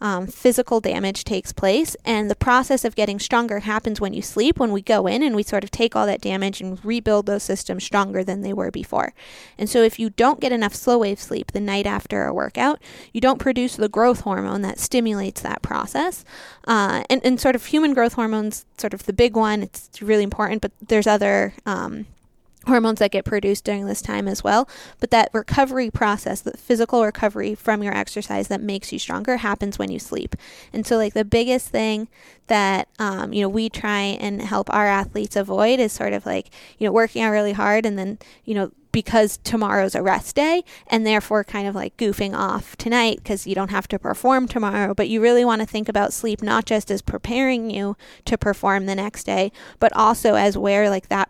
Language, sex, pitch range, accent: English, female, 200-235 Hz, American